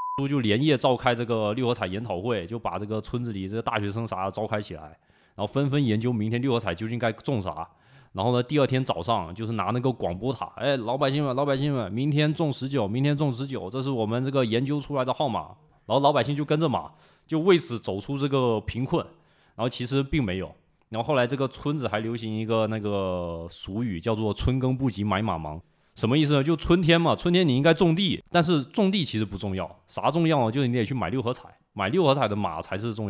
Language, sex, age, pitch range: Chinese, male, 20-39, 110-145 Hz